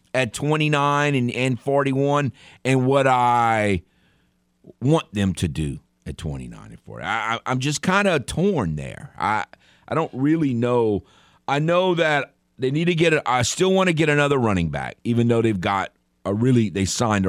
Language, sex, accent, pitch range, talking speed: English, male, American, 75-125 Hz, 180 wpm